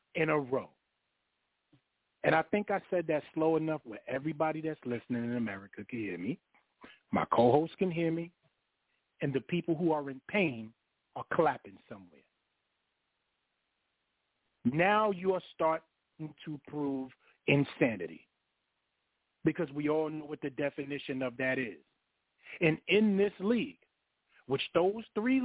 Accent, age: American, 40-59